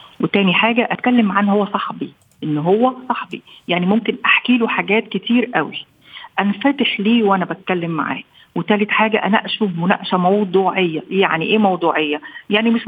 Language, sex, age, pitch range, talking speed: Arabic, female, 50-69, 180-235 Hz, 145 wpm